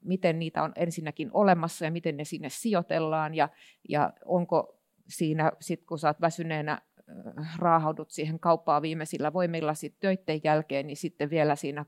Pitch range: 155-190 Hz